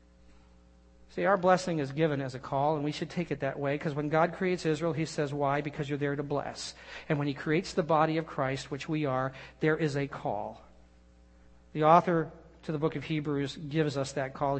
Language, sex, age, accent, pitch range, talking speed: English, male, 50-69, American, 135-200 Hz, 220 wpm